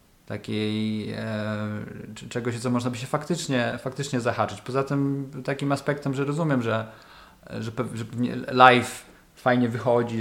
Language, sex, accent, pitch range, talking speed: Polish, male, native, 115-155 Hz, 135 wpm